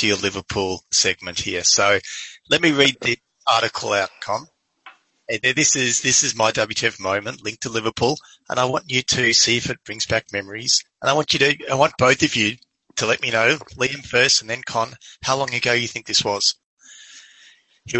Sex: male